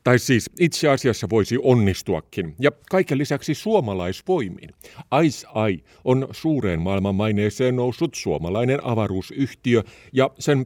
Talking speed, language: 115 wpm, Finnish